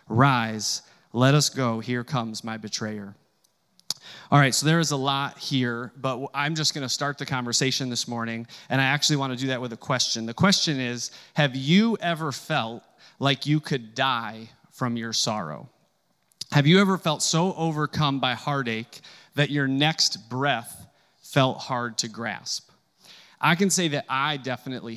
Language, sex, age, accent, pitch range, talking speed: English, male, 30-49, American, 125-150 Hz, 175 wpm